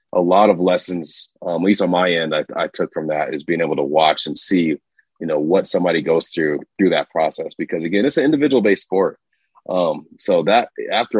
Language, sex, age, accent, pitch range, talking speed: English, male, 30-49, American, 85-105 Hz, 225 wpm